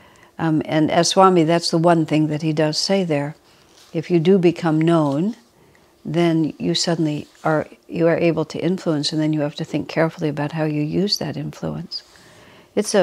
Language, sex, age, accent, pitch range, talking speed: English, female, 60-79, American, 155-175 Hz, 195 wpm